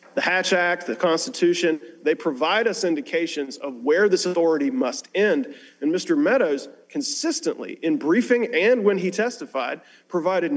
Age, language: 40-59, English